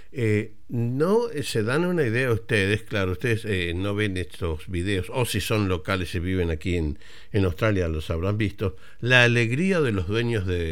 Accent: Argentinian